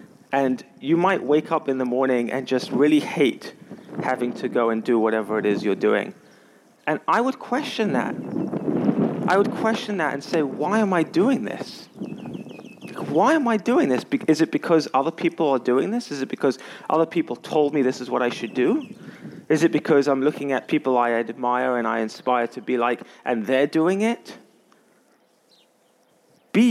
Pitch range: 130-185 Hz